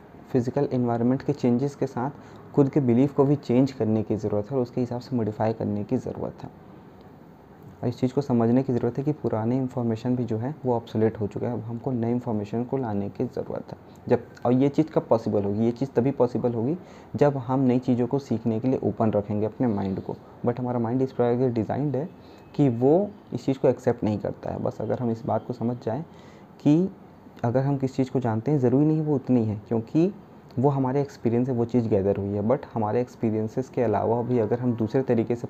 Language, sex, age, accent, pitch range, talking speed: Hindi, male, 20-39, native, 110-130 Hz, 230 wpm